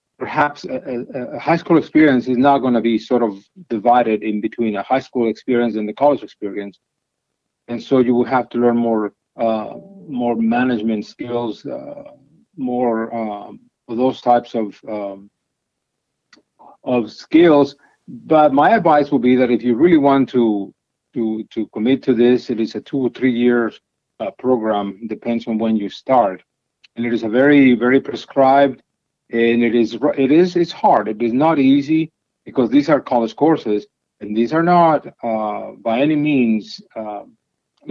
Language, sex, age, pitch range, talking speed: English, male, 50-69, 110-140 Hz, 170 wpm